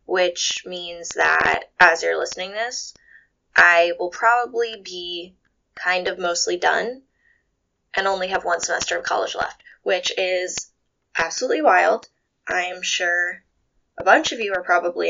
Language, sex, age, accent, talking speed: English, female, 10-29, American, 140 wpm